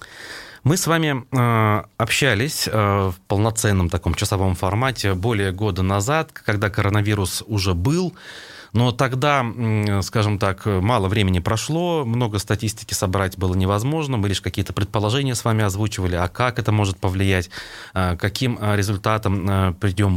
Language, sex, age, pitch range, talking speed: Russian, male, 30-49, 100-125 Hz, 130 wpm